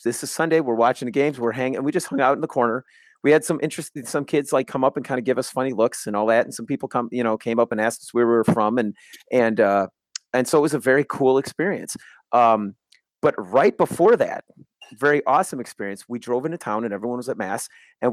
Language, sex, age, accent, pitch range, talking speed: English, male, 30-49, American, 115-145 Hz, 260 wpm